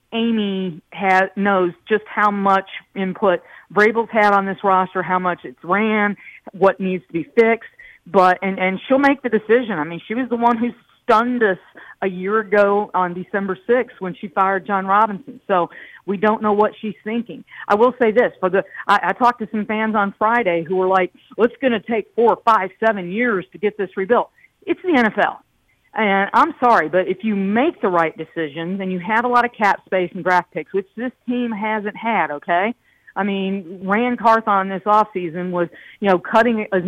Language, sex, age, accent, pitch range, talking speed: English, female, 50-69, American, 185-220 Hz, 205 wpm